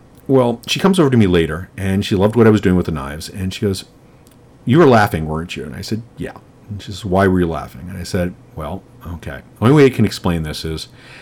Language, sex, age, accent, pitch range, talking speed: English, male, 40-59, American, 90-120 Hz, 260 wpm